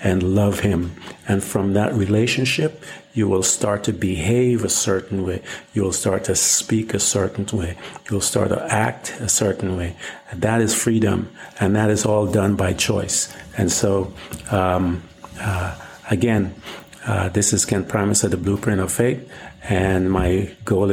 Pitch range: 95-115 Hz